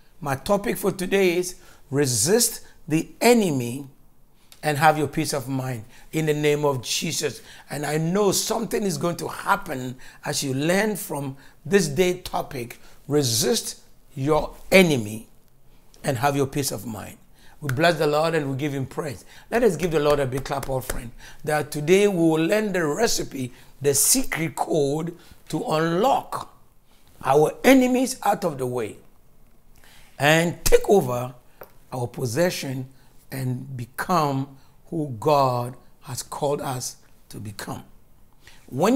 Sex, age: male, 60-79